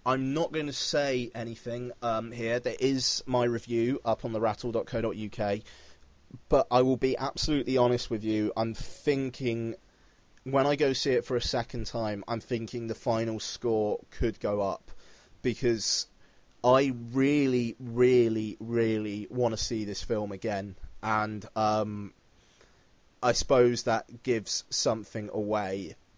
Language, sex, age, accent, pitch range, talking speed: English, male, 30-49, British, 110-125 Hz, 140 wpm